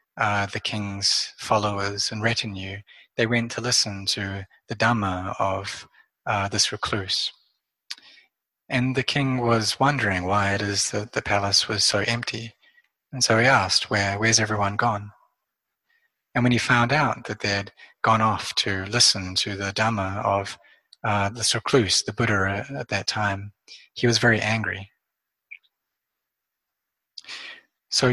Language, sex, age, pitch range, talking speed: English, male, 30-49, 100-120 Hz, 145 wpm